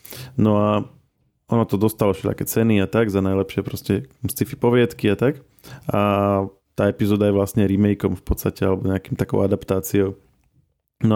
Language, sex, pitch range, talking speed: Slovak, male, 100-125 Hz, 150 wpm